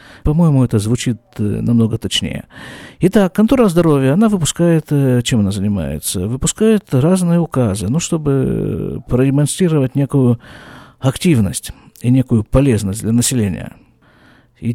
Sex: male